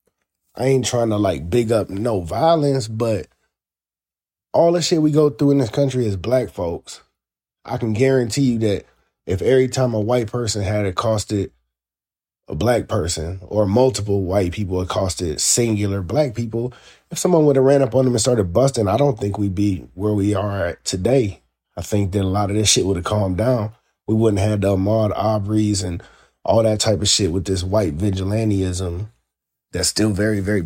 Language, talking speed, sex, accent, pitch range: English, 195 wpm, male, American, 95-125 Hz